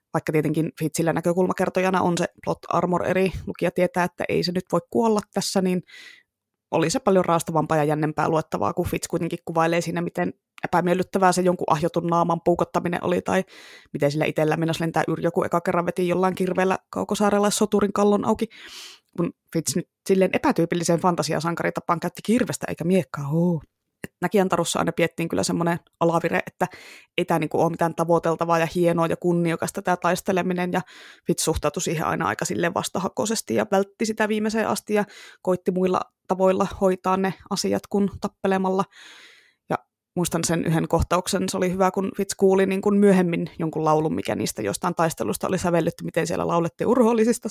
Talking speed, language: 170 wpm, Finnish